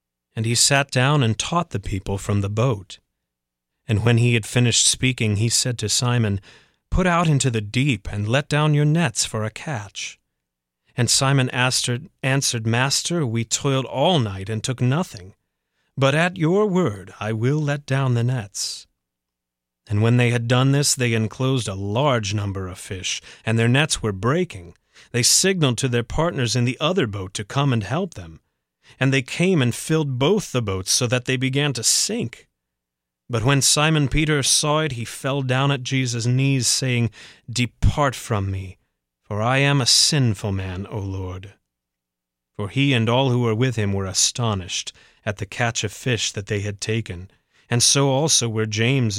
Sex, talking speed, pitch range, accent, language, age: male, 180 wpm, 100-135 Hz, American, English, 30-49